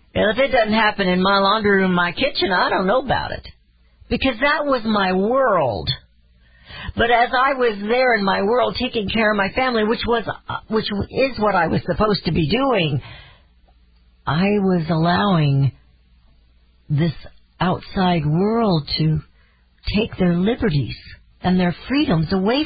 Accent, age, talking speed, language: American, 60-79, 150 wpm, English